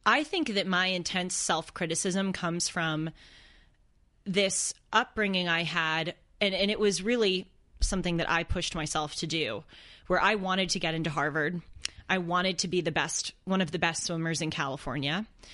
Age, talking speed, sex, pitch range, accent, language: 20-39, 170 wpm, female, 165-210 Hz, American, English